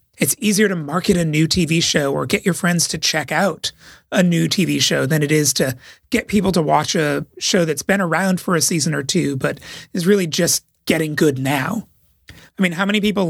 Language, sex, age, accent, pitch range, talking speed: English, male, 30-49, American, 150-195 Hz, 220 wpm